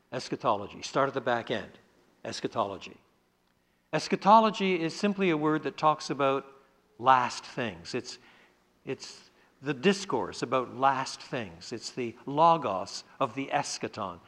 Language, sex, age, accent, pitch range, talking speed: English, male, 60-79, American, 120-195 Hz, 125 wpm